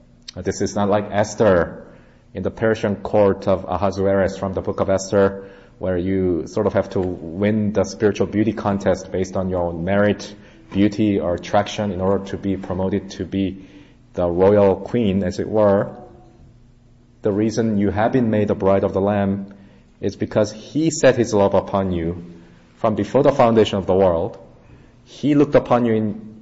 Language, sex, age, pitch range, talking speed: English, male, 30-49, 95-115 Hz, 180 wpm